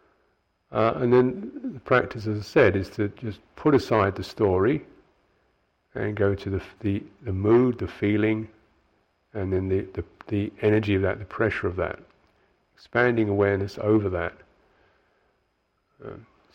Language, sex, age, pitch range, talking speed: English, male, 50-69, 95-115 Hz, 150 wpm